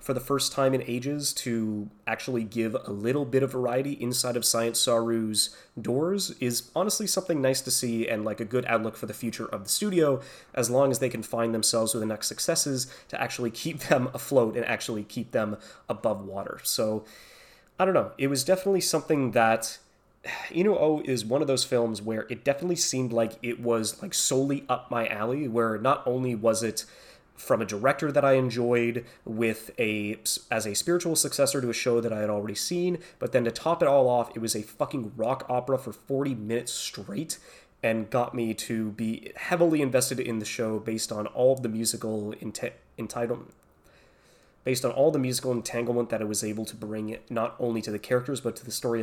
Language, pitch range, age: English, 110-135 Hz, 20-39